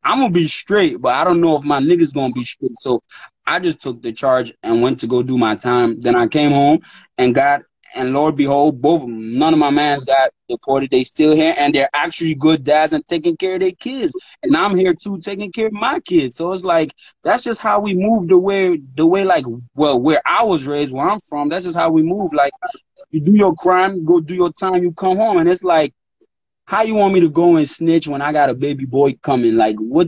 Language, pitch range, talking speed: English, 125-180 Hz, 255 wpm